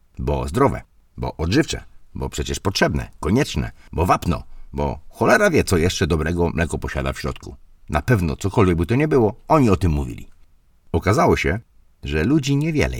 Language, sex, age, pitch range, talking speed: Polish, male, 50-69, 75-95 Hz, 165 wpm